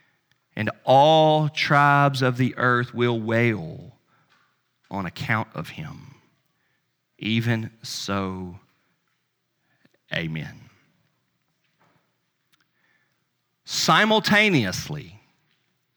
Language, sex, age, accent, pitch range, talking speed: English, male, 40-59, American, 110-150 Hz, 60 wpm